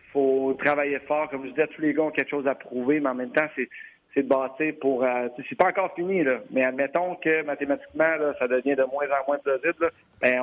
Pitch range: 125-145 Hz